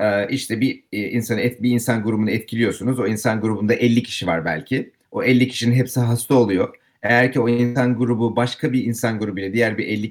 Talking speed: 190 wpm